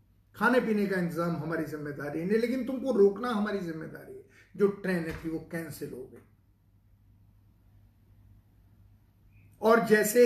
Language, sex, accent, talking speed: Hindi, male, native, 135 wpm